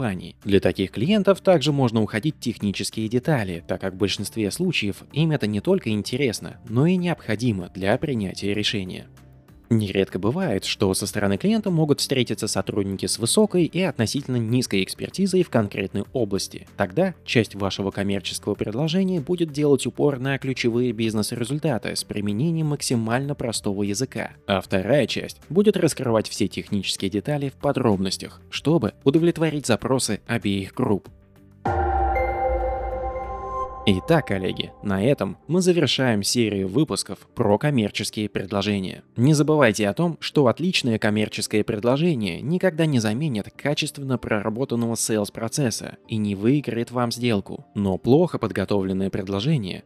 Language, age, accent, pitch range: Russian, 20-39, native, 100-145 Hz